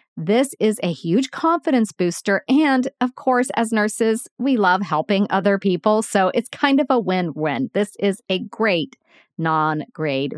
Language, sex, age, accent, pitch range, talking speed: English, female, 40-59, American, 185-265 Hz, 155 wpm